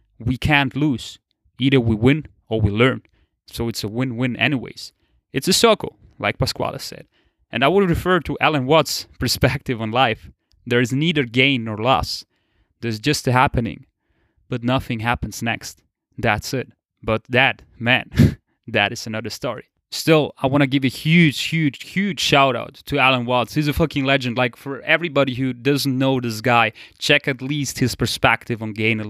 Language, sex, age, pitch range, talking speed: English, male, 20-39, 115-140 Hz, 175 wpm